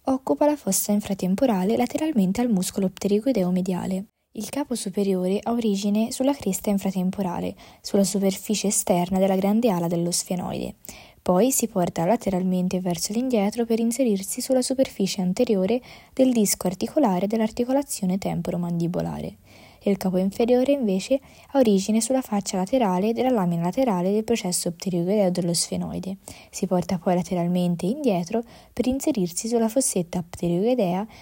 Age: 20-39